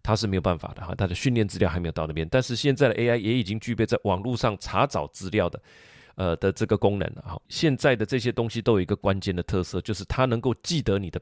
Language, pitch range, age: Chinese, 95-115 Hz, 30-49